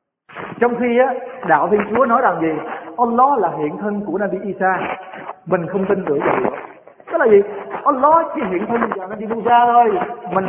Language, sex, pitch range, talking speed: Vietnamese, male, 190-240 Hz, 205 wpm